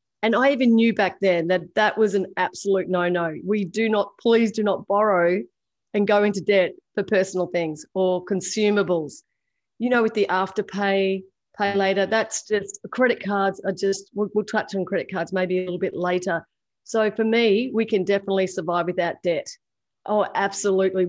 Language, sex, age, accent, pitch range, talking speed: English, female, 30-49, Australian, 180-215 Hz, 180 wpm